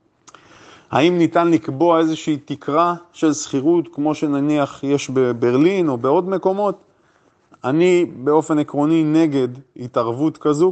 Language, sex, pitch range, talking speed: Hebrew, male, 125-160 Hz, 110 wpm